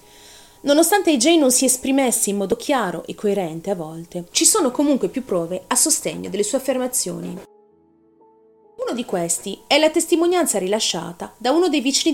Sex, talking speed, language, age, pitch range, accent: female, 165 wpm, Italian, 30-49, 175-260 Hz, native